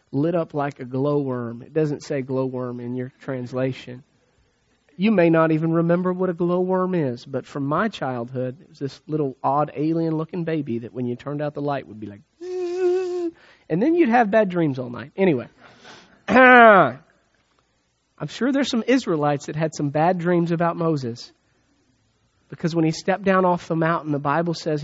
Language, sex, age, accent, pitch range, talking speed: English, male, 40-59, American, 135-175 Hz, 190 wpm